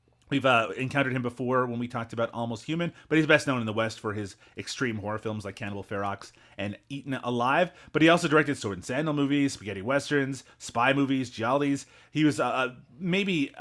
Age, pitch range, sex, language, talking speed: 30-49, 110-140 Hz, male, English, 205 wpm